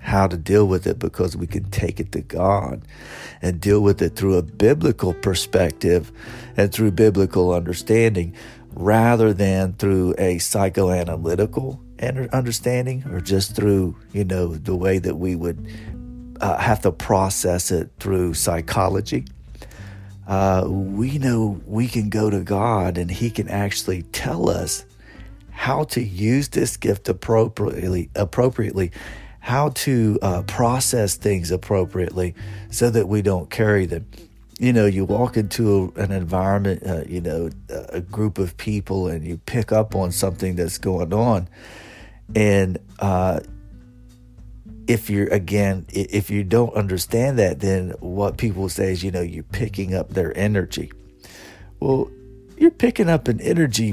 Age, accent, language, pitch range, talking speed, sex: 40-59, American, English, 90-110 Hz, 145 wpm, male